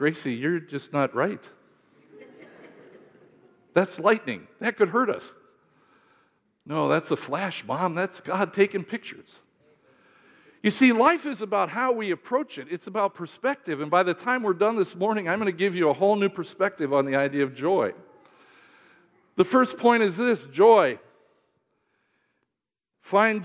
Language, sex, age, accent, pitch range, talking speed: English, male, 50-69, American, 170-210 Hz, 155 wpm